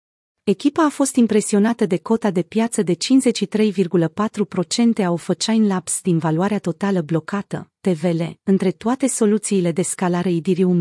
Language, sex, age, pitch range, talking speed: Romanian, female, 30-49, 175-215 Hz, 135 wpm